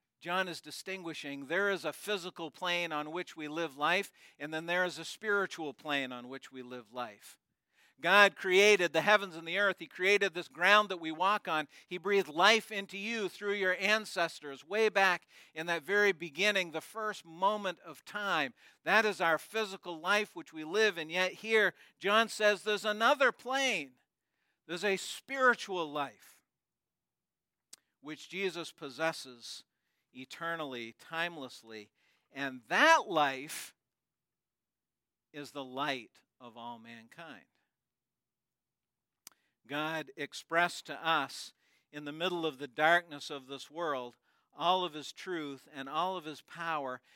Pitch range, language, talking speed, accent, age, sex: 145-195 Hz, English, 145 wpm, American, 50-69, male